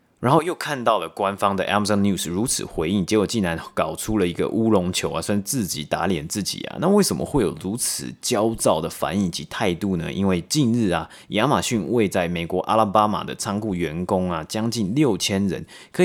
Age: 30-49